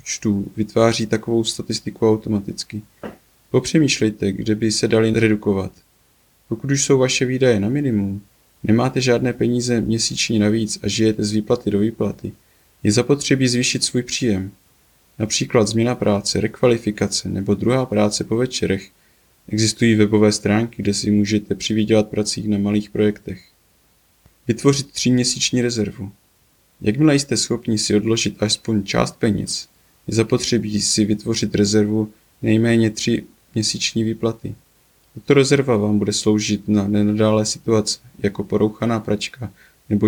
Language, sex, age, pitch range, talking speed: Czech, male, 20-39, 100-115 Hz, 125 wpm